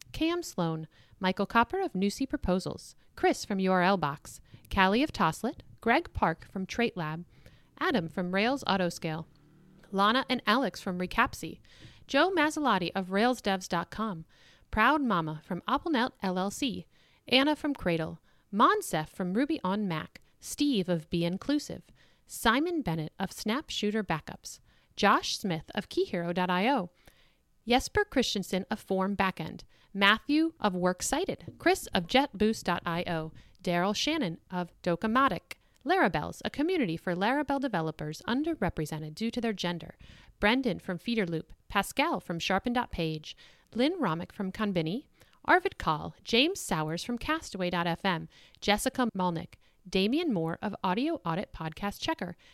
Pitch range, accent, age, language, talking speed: 175-255 Hz, American, 40-59, English, 125 wpm